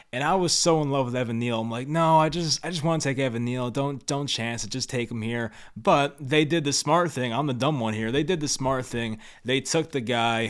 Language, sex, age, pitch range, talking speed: English, male, 20-39, 110-135 Hz, 275 wpm